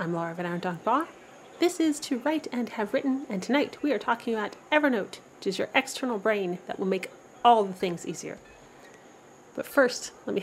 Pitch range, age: 195-285 Hz, 30-49